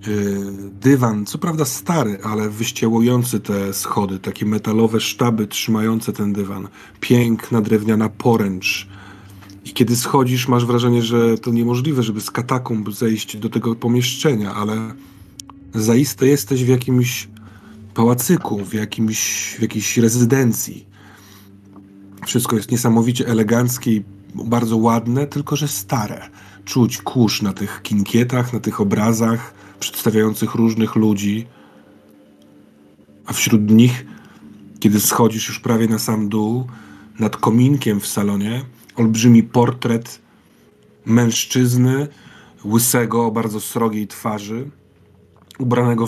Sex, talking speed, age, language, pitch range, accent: male, 110 wpm, 40-59, Polish, 100-120 Hz, native